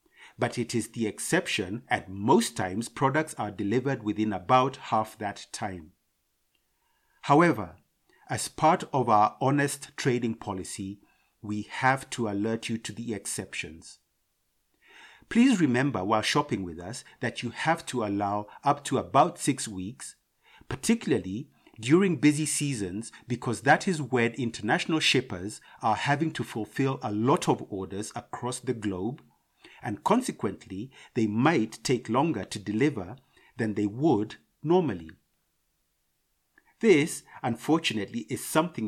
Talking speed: 130 wpm